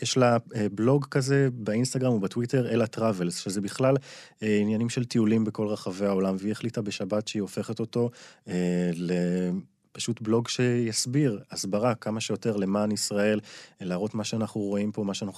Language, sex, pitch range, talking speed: Hebrew, male, 95-115 Hz, 150 wpm